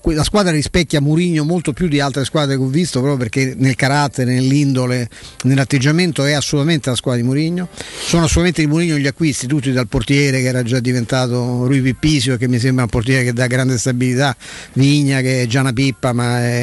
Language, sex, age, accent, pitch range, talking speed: Italian, male, 50-69, native, 130-155 Hz, 200 wpm